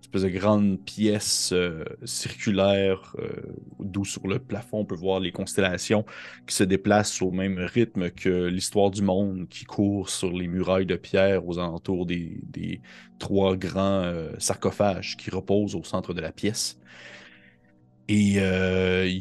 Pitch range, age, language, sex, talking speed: 90-115 Hz, 30-49, French, male, 160 wpm